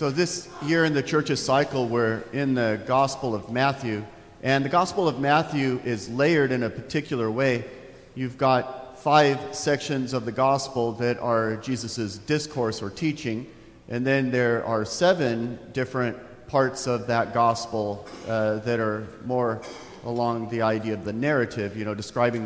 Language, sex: English, male